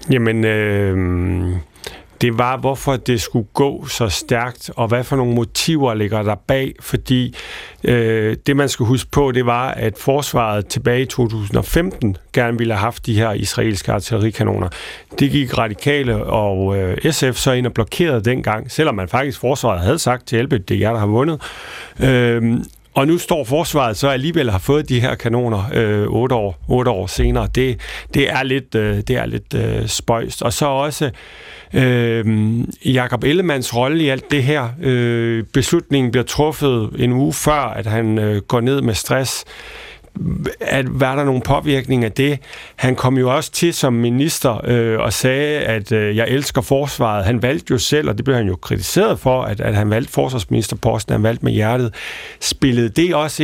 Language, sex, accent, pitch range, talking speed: Danish, male, native, 110-135 Hz, 185 wpm